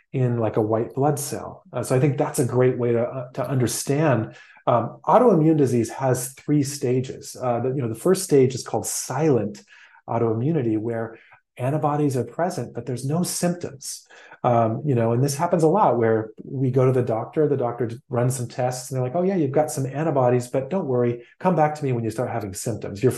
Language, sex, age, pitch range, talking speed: English, male, 30-49, 115-145 Hz, 215 wpm